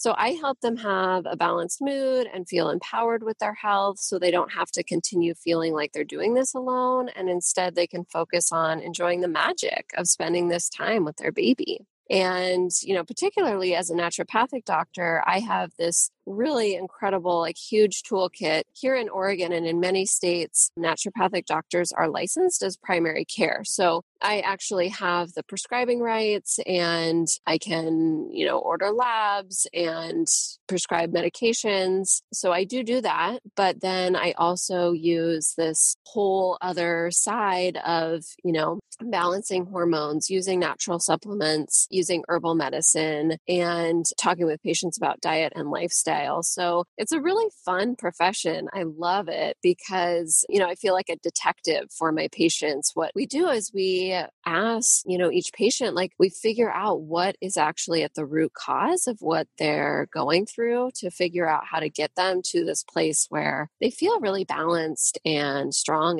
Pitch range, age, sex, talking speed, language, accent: 170-205 Hz, 20-39, female, 170 wpm, English, American